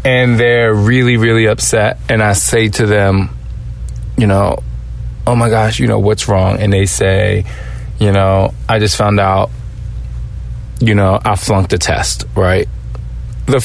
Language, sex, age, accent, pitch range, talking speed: English, male, 20-39, American, 95-125 Hz, 160 wpm